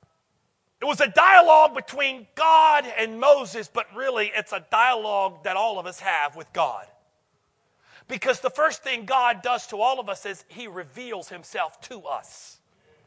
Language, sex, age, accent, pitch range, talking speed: English, male, 40-59, American, 215-275 Hz, 165 wpm